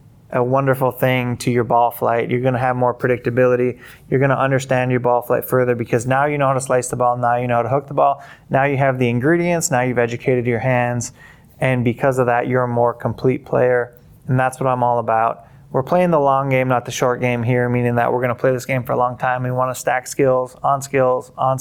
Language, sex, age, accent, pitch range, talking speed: English, male, 20-39, American, 125-145 Hz, 245 wpm